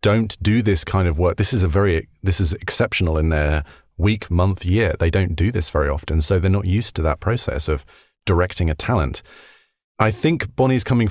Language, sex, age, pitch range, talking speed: English, male, 30-49, 80-105 Hz, 210 wpm